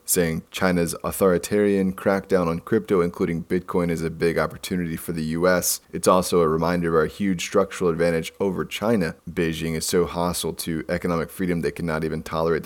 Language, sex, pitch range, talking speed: English, male, 80-90 Hz, 175 wpm